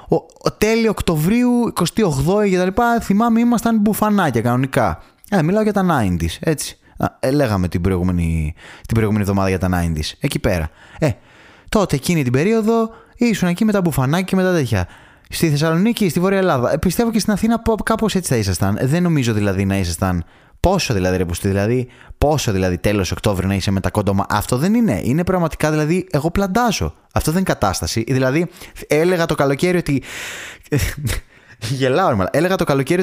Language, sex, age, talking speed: Greek, male, 20-39, 165 wpm